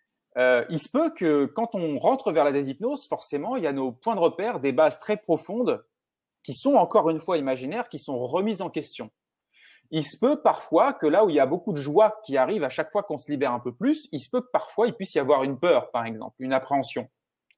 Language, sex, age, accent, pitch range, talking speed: French, male, 30-49, French, 140-220 Hz, 250 wpm